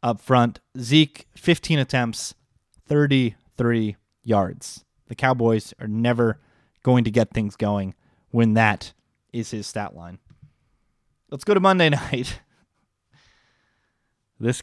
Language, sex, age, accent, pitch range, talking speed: English, male, 20-39, American, 115-145 Hz, 115 wpm